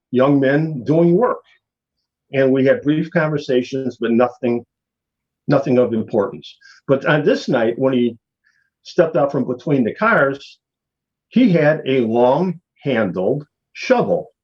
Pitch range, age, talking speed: 125-160 Hz, 50-69, 135 wpm